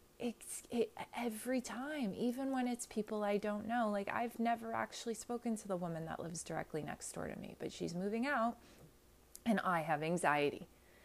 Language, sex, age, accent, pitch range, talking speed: English, female, 20-39, American, 170-235 Hz, 180 wpm